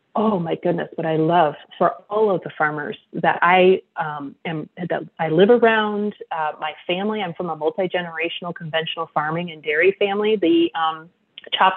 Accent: American